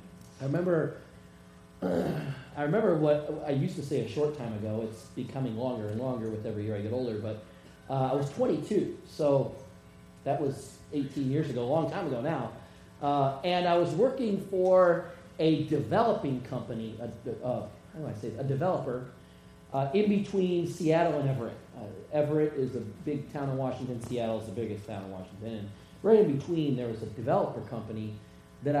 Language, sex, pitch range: English, male, 115-165 Hz